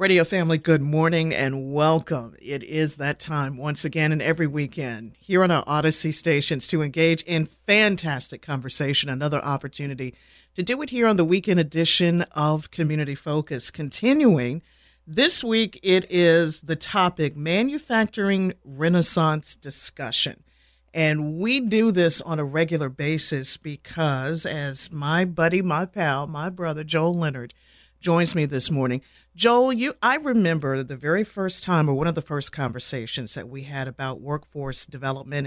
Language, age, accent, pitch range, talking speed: English, 50-69, American, 140-180 Hz, 150 wpm